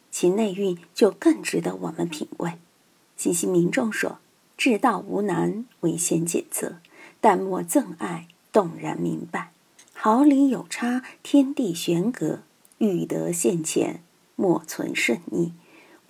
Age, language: 50-69, Chinese